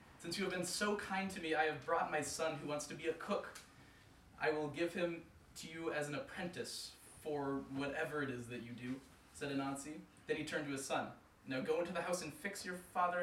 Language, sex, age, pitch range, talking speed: English, male, 20-39, 135-165 Hz, 235 wpm